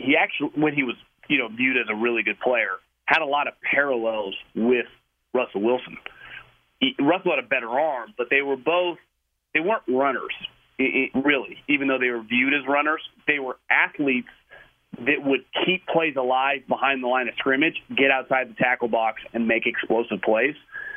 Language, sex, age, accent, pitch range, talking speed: English, male, 40-59, American, 120-145 Hz, 190 wpm